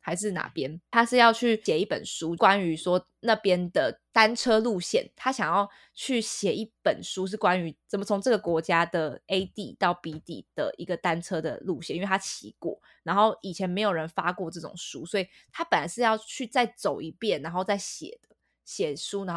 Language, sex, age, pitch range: Chinese, female, 20-39, 175-230 Hz